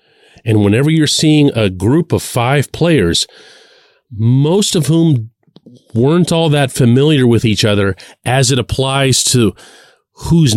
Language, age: English, 40-59